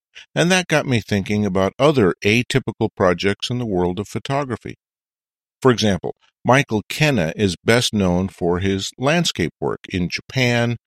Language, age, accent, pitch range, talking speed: English, 50-69, American, 90-120 Hz, 150 wpm